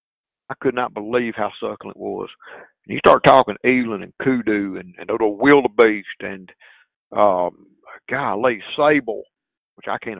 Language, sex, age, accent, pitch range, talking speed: English, male, 50-69, American, 110-130 Hz, 170 wpm